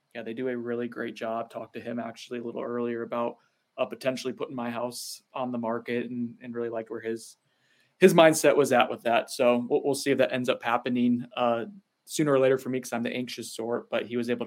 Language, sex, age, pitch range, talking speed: English, male, 20-39, 120-155 Hz, 245 wpm